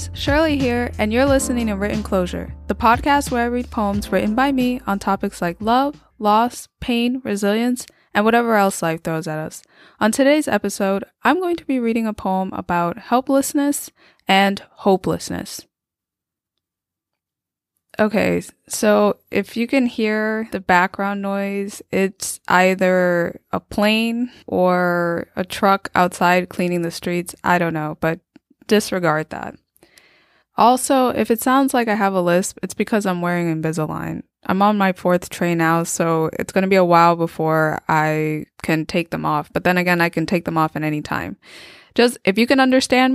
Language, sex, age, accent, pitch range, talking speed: English, female, 10-29, American, 175-235 Hz, 165 wpm